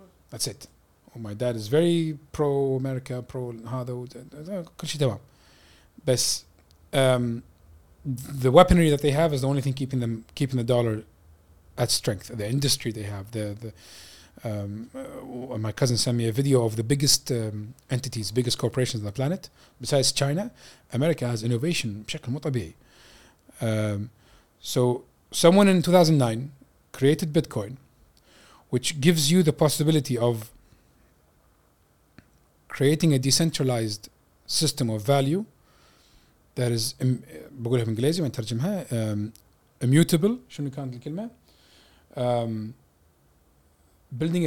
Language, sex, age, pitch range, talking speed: Arabic, male, 30-49, 110-145 Hz, 110 wpm